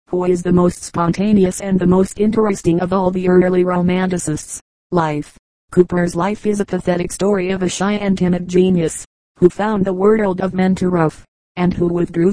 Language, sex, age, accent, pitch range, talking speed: English, female, 30-49, American, 180-195 Hz, 185 wpm